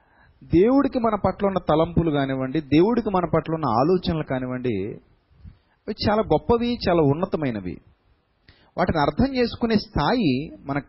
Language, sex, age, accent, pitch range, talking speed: Telugu, male, 30-49, native, 125-170 Hz, 115 wpm